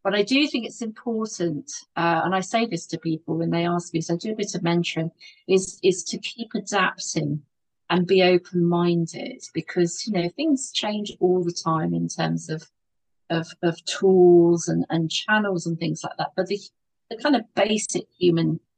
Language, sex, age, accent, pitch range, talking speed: English, female, 40-59, British, 165-230 Hz, 195 wpm